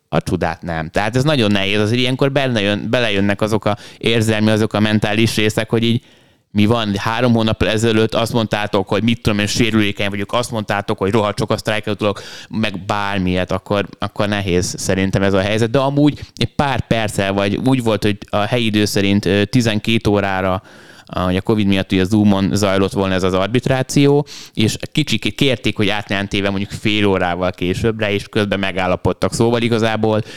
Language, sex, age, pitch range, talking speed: Hungarian, male, 20-39, 100-115 Hz, 175 wpm